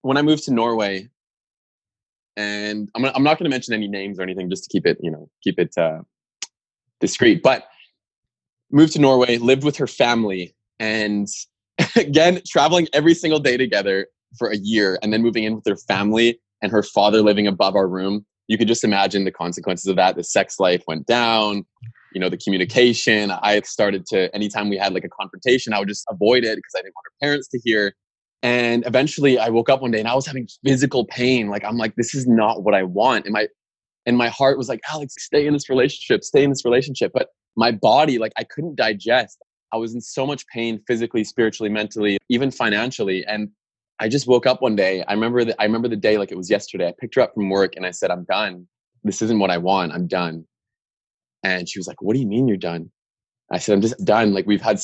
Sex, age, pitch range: male, 20-39, 100-125 Hz